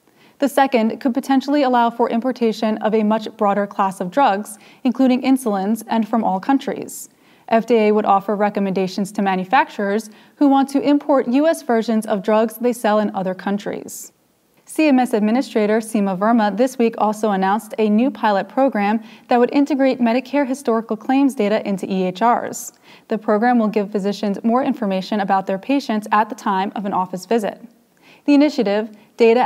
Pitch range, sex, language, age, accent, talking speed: 210-255 Hz, female, English, 20-39, American, 165 wpm